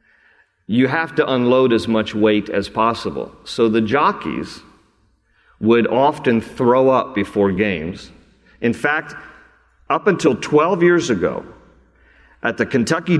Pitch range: 110-160 Hz